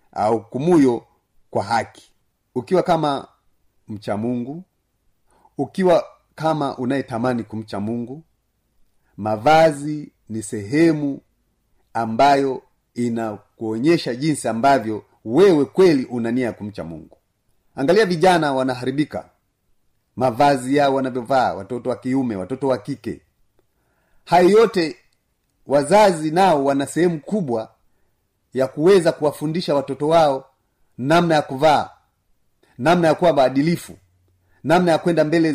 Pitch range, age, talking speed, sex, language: 110-155 Hz, 40-59, 95 wpm, male, Swahili